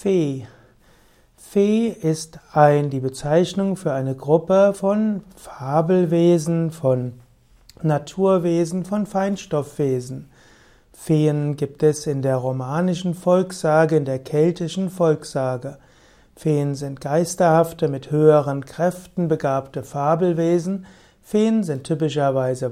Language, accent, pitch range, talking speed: German, German, 140-175 Hz, 95 wpm